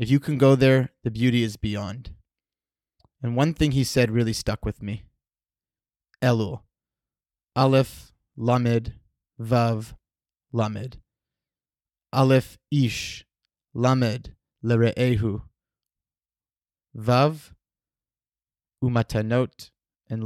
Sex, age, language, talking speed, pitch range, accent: male, 20-39, English, 90 wpm, 110-130 Hz, American